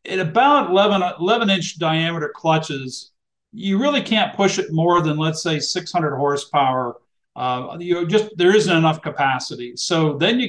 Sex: male